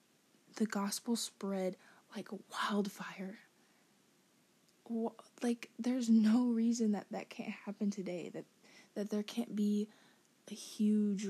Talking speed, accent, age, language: 110 wpm, American, 20-39, English